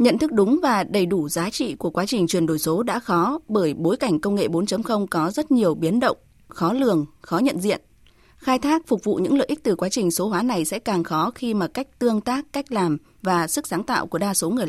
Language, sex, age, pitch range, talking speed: Vietnamese, female, 20-39, 175-255 Hz, 255 wpm